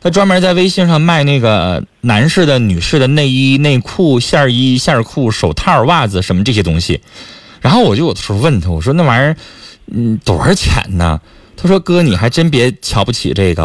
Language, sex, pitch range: Chinese, male, 105-160 Hz